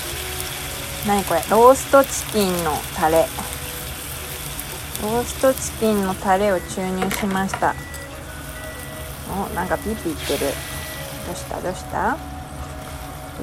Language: Japanese